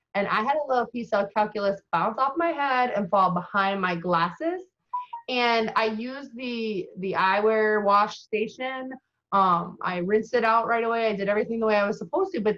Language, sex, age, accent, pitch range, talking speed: English, female, 20-39, American, 190-230 Hz, 200 wpm